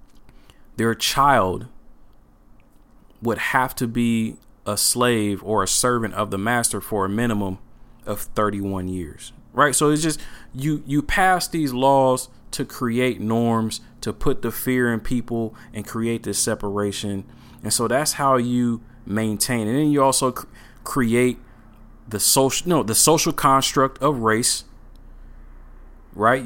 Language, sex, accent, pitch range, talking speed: English, male, American, 105-135 Hz, 140 wpm